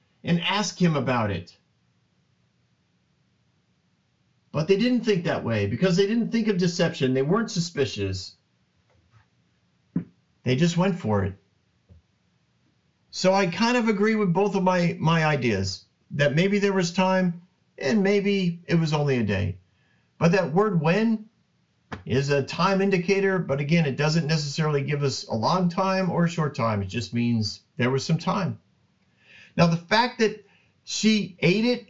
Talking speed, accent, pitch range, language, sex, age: 160 wpm, American, 130-190 Hz, English, male, 50-69